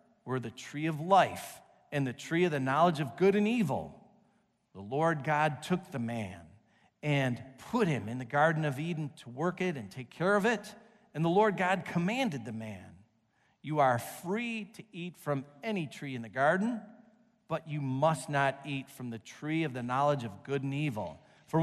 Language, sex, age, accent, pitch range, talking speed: English, male, 40-59, American, 140-220 Hz, 195 wpm